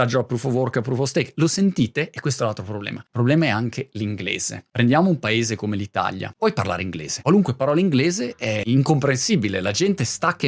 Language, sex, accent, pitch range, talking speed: Italian, male, native, 115-155 Hz, 200 wpm